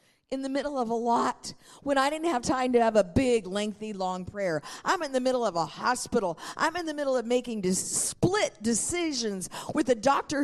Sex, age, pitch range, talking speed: female, 50-69, 225-285 Hz, 205 wpm